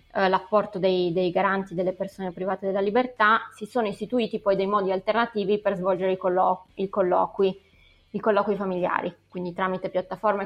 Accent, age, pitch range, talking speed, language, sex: native, 20-39, 185-205 Hz, 150 wpm, Italian, female